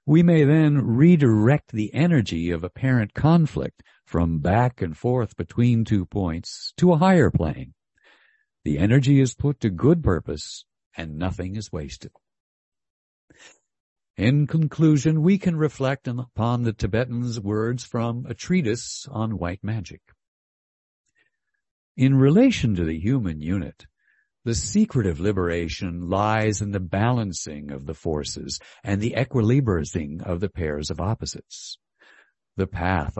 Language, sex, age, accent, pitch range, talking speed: English, male, 60-79, American, 85-130 Hz, 130 wpm